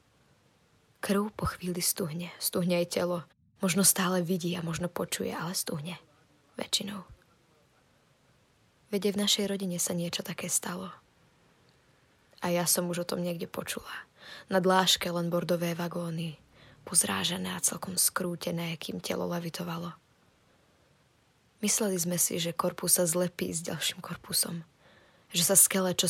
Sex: female